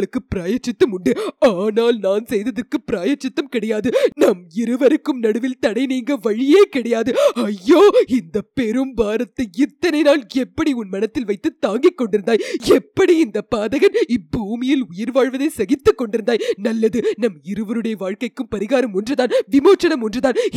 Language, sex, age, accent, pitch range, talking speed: Tamil, female, 20-39, native, 205-290 Hz, 35 wpm